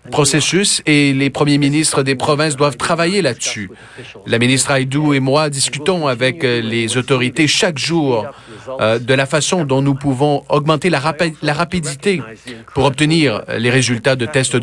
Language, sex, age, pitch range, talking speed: French, male, 40-59, 130-160 Hz, 155 wpm